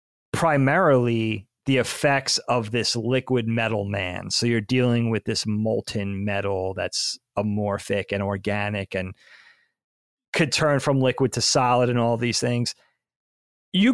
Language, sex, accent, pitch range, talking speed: English, male, American, 110-150 Hz, 135 wpm